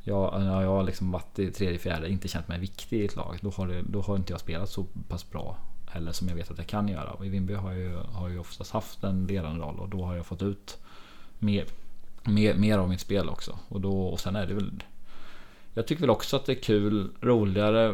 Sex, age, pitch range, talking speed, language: male, 20-39, 90-100 Hz, 255 wpm, Swedish